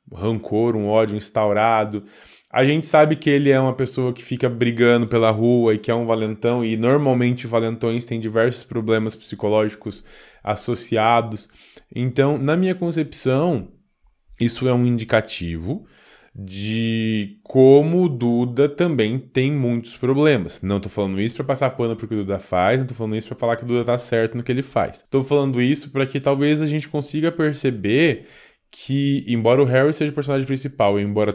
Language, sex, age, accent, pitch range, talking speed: Portuguese, male, 20-39, Brazilian, 110-135 Hz, 175 wpm